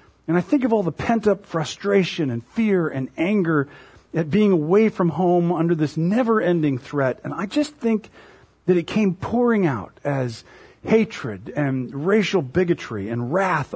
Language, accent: English, American